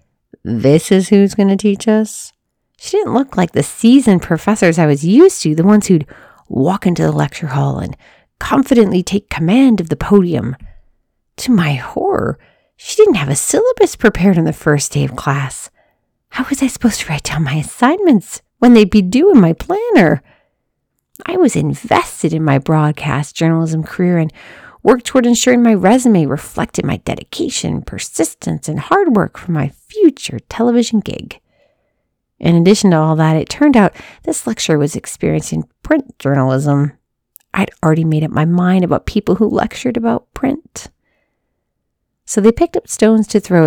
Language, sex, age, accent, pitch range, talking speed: English, female, 40-59, American, 155-225 Hz, 170 wpm